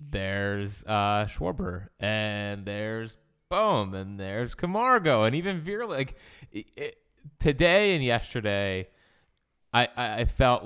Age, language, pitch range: 20-39, English, 100-140 Hz